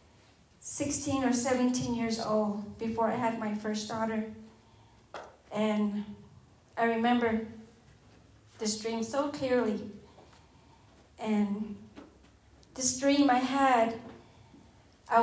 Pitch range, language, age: 220-250 Hz, English, 40-59